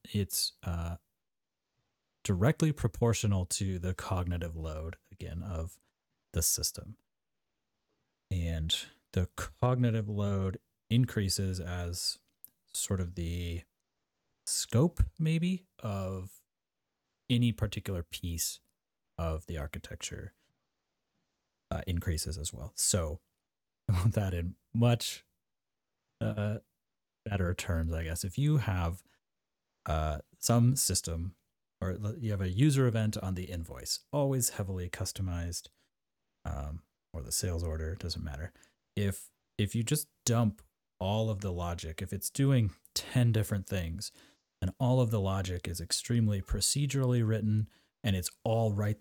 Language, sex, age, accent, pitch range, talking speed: English, male, 30-49, American, 85-110 Hz, 120 wpm